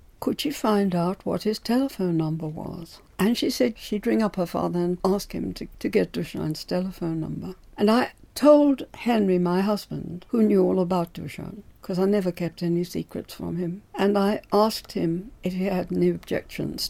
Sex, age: female, 60-79